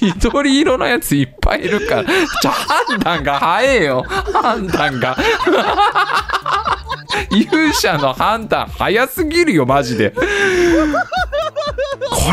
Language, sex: Japanese, male